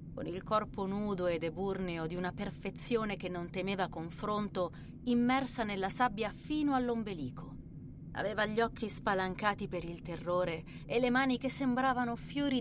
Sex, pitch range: female, 175-230 Hz